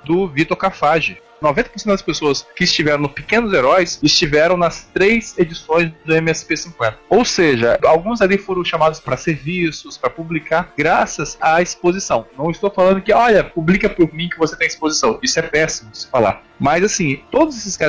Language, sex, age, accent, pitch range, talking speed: Portuguese, male, 20-39, Brazilian, 155-210 Hz, 175 wpm